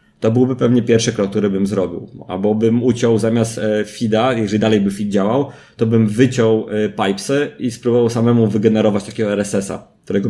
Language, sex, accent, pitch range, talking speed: Polish, male, native, 100-115 Hz, 170 wpm